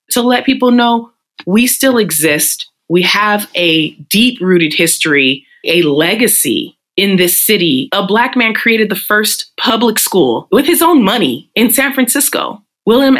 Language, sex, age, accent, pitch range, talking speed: English, female, 20-39, American, 180-245 Hz, 150 wpm